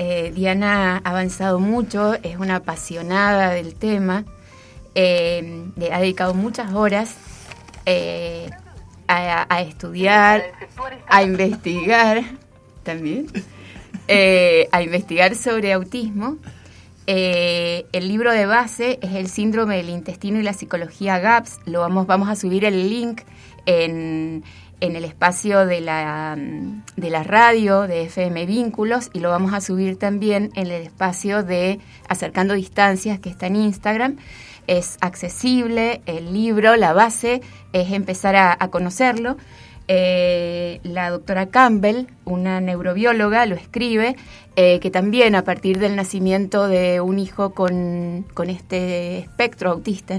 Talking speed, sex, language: 130 wpm, female, Spanish